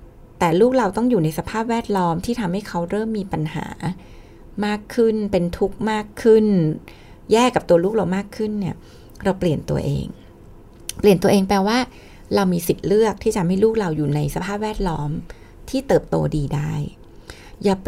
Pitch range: 175-225 Hz